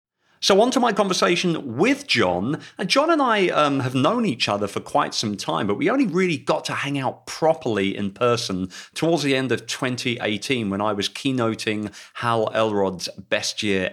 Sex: male